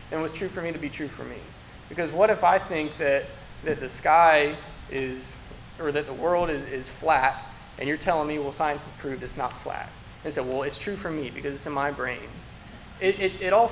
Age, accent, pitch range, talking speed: 20-39, American, 140-180 Hz, 240 wpm